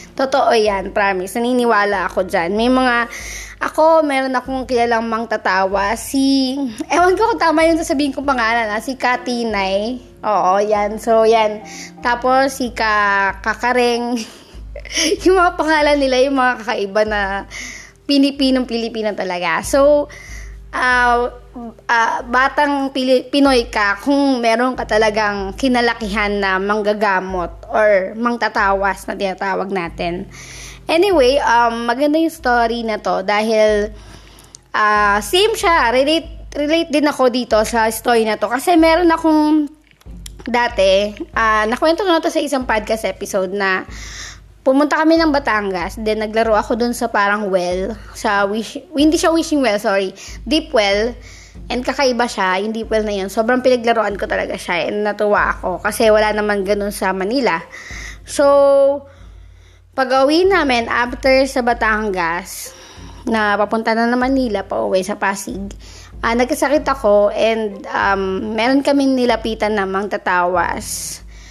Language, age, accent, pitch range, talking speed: Filipino, 20-39, native, 205-270 Hz, 135 wpm